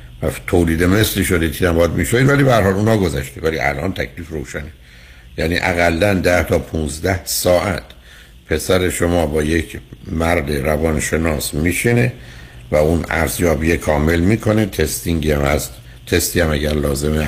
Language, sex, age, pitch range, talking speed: Persian, male, 60-79, 75-90 Hz, 140 wpm